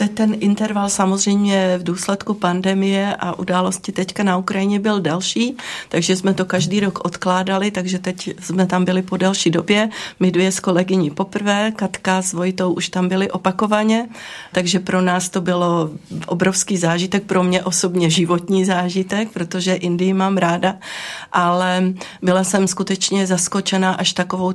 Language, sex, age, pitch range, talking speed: Czech, female, 30-49, 180-195 Hz, 150 wpm